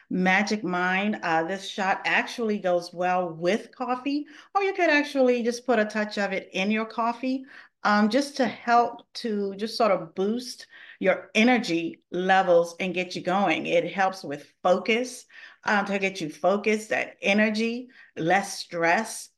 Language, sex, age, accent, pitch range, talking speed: English, female, 40-59, American, 185-235 Hz, 160 wpm